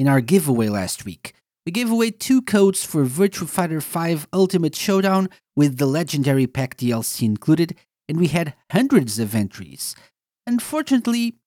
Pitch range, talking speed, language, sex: 135-195 Hz, 150 wpm, English, male